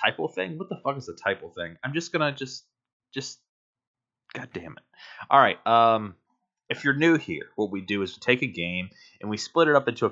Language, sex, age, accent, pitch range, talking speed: English, male, 20-39, American, 100-125 Hz, 230 wpm